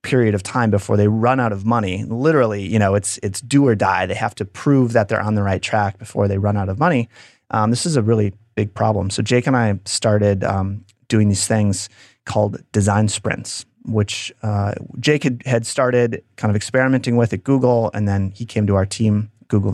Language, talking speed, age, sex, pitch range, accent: English, 220 wpm, 30-49, male, 105-120 Hz, American